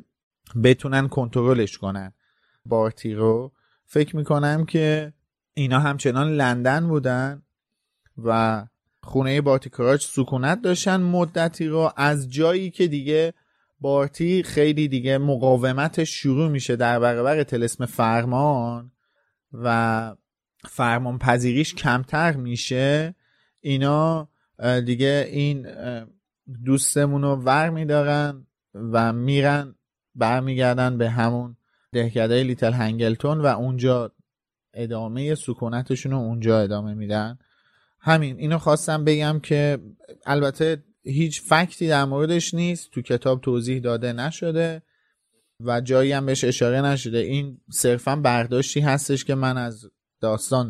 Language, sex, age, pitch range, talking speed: Persian, male, 30-49, 120-150 Hz, 110 wpm